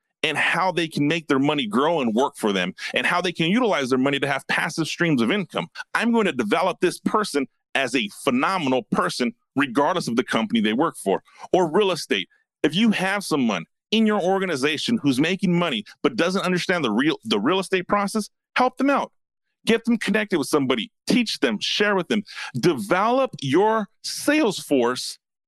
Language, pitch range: English, 150-215 Hz